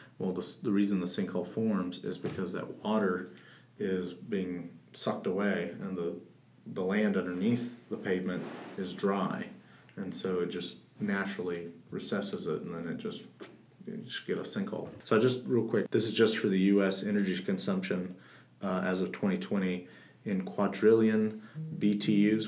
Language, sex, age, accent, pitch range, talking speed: English, male, 30-49, American, 95-105 Hz, 160 wpm